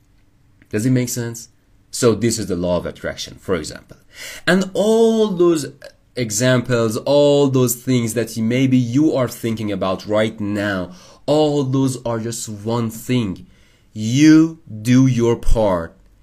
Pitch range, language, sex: 100-140 Hz, English, male